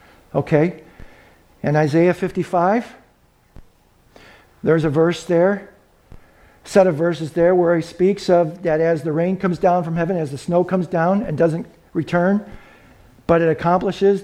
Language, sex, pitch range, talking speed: English, male, 160-215 Hz, 150 wpm